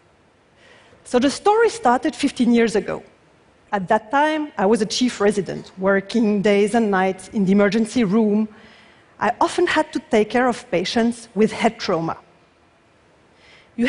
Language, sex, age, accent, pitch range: Chinese, female, 40-59, French, 210-280 Hz